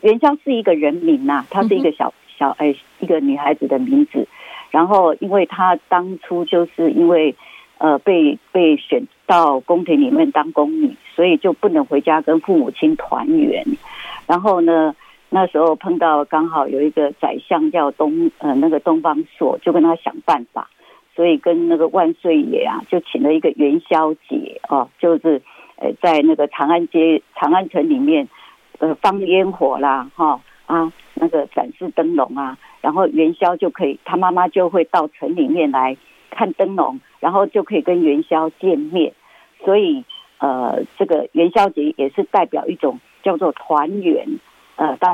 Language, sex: Chinese, female